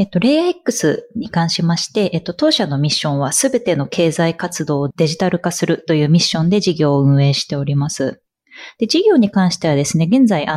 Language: Japanese